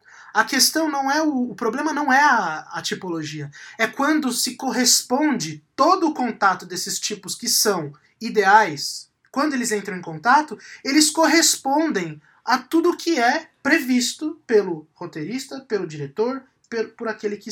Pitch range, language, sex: 205-275 Hz, Portuguese, male